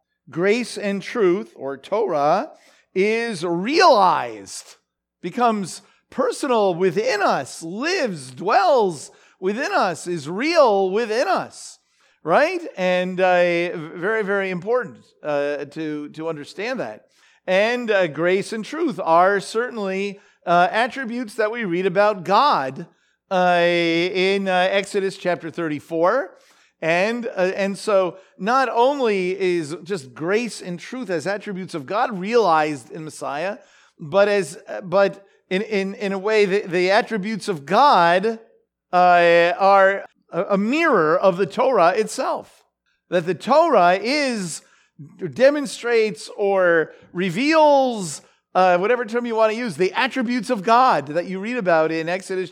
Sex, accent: male, American